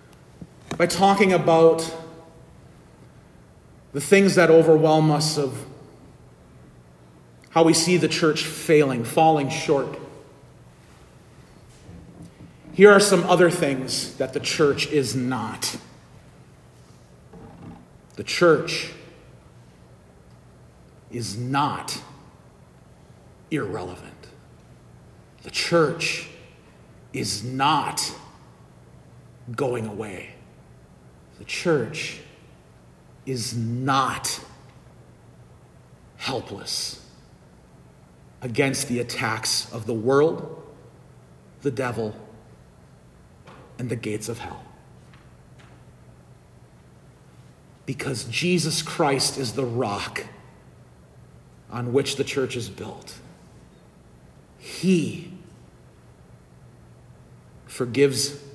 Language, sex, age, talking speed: English, male, 40-59, 70 wpm